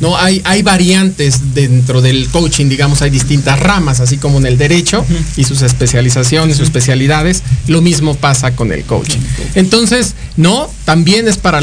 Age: 40-59